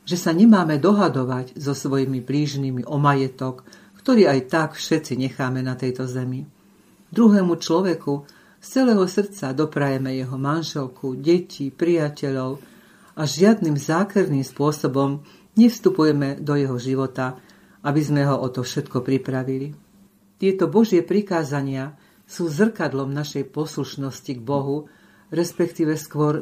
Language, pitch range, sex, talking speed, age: Slovak, 135-170 Hz, female, 120 wpm, 50-69